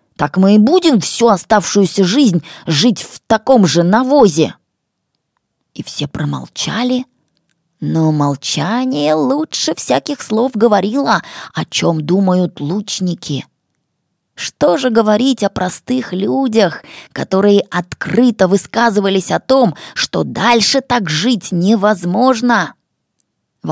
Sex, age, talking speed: female, 20-39, 105 wpm